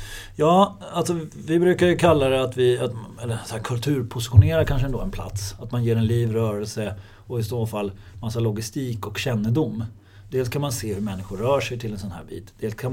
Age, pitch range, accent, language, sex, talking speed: 30-49, 100-115 Hz, native, Swedish, male, 215 wpm